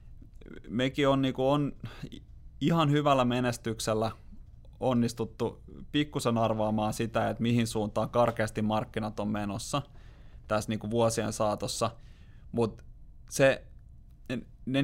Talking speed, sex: 105 wpm, male